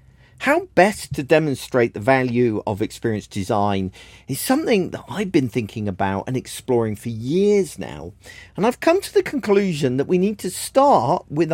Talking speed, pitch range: 170 wpm, 100-140 Hz